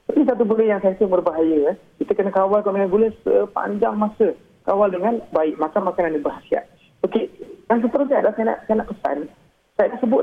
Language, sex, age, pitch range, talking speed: Malay, male, 40-59, 180-225 Hz, 180 wpm